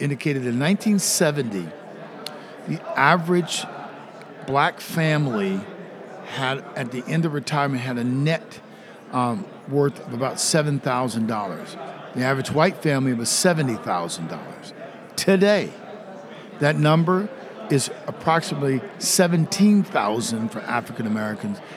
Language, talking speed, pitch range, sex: English, 95 wpm, 130-180 Hz, male